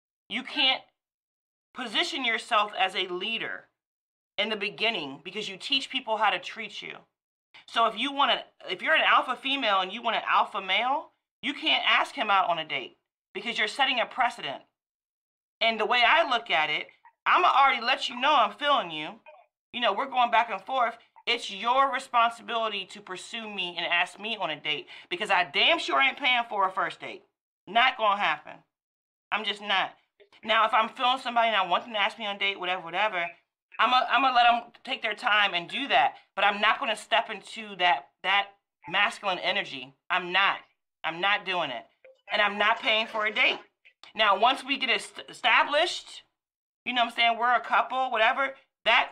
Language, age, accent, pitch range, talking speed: English, 30-49, American, 195-255 Hz, 205 wpm